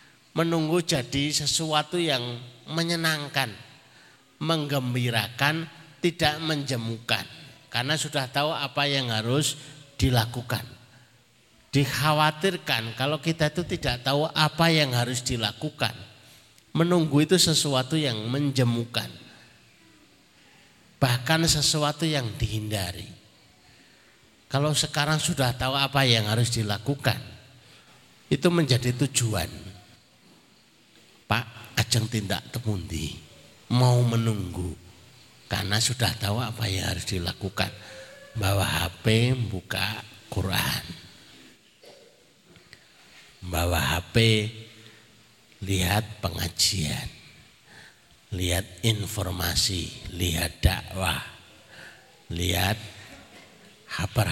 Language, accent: Indonesian, native